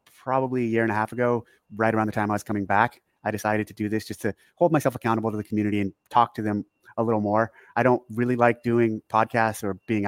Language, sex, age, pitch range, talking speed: English, male, 30-49, 100-115 Hz, 255 wpm